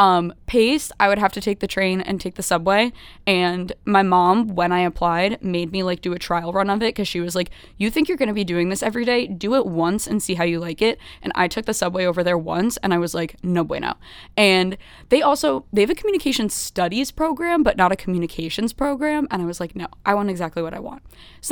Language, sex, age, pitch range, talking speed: English, female, 20-39, 175-220 Hz, 250 wpm